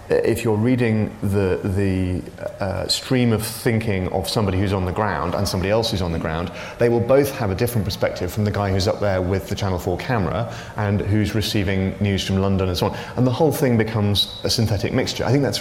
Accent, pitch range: British, 95-115 Hz